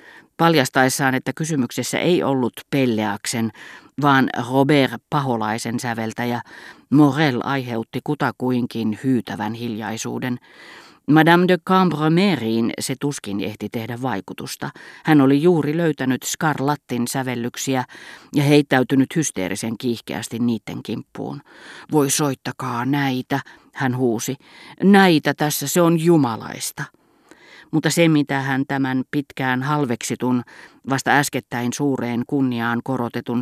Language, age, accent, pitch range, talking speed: Finnish, 40-59, native, 120-145 Hz, 105 wpm